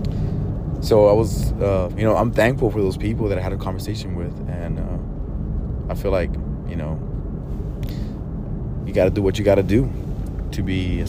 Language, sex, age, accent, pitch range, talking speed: English, male, 30-49, American, 85-115 Hz, 195 wpm